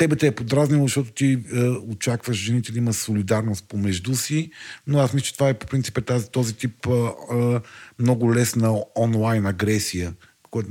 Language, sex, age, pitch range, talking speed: Bulgarian, male, 40-59, 105-125 Hz, 175 wpm